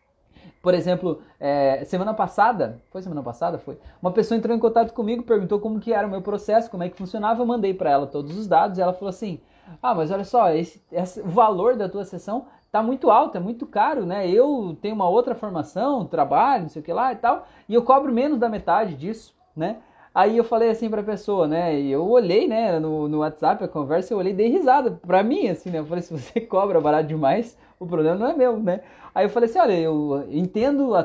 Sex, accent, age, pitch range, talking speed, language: male, Brazilian, 20-39, 170-230 Hz, 240 wpm, Portuguese